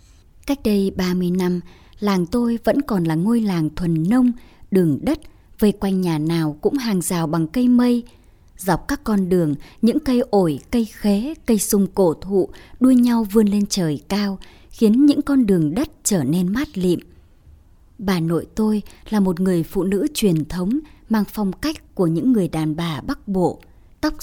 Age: 20-39